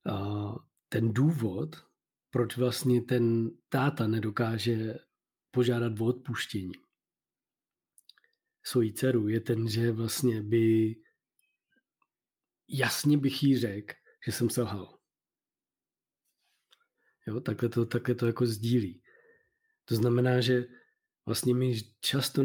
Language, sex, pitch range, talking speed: Czech, male, 115-130 Hz, 100 wpm